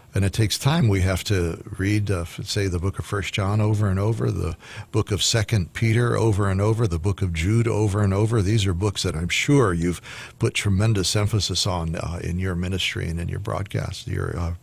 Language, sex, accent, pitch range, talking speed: English, male, American, 95-120 Hz, 220 wpm